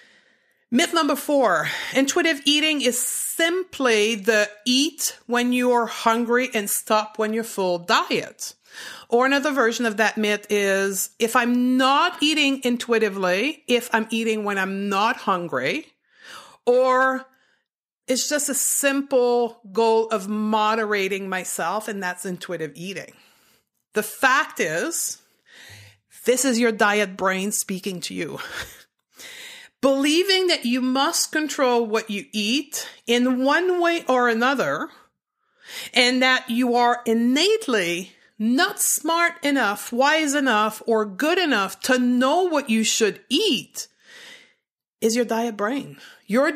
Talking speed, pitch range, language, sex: 130 wpm, 215-275 Hz, English, female